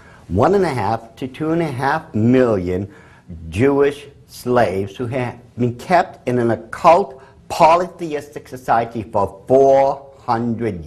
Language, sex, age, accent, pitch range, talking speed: English, male, 50-69, American, 115-160 Hz, 125 wpm